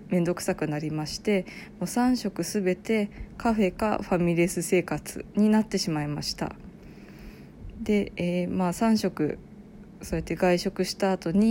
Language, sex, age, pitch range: Japanese, female, 20-39, 170-210 Hz